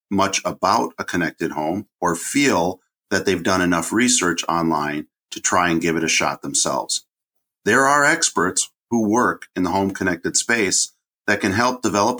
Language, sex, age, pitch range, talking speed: English, male, 50-69, 85-105 Hz, 170 wpm